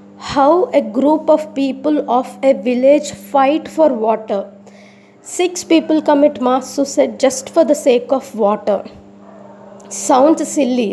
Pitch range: 240-300 Hz